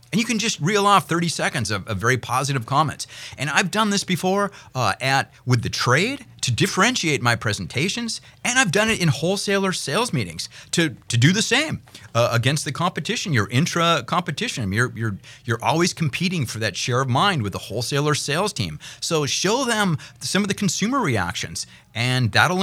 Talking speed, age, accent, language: 190 wpm, 30-49, American, English